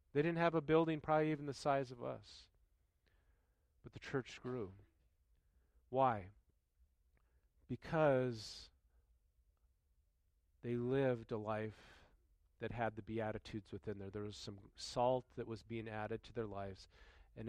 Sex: male